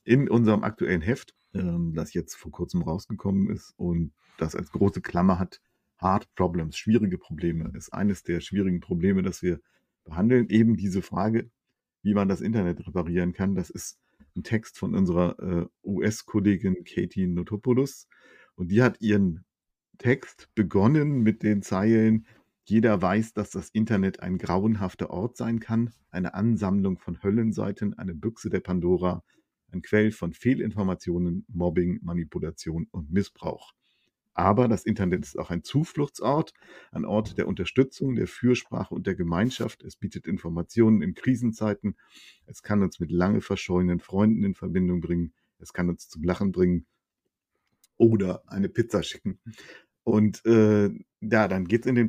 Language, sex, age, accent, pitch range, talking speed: German, male, 50-69, German, 90-115 Hz, 150 wpm